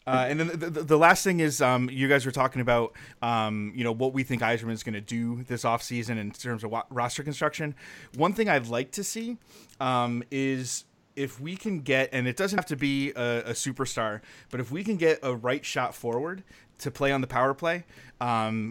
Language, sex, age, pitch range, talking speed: English, male, 30-49, 120-145 Hz, 230 wpm